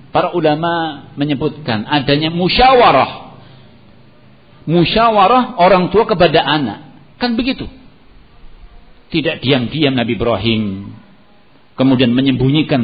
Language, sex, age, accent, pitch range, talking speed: Indonesian, male, 50-69, native, 115-145 Hz, 85 wpm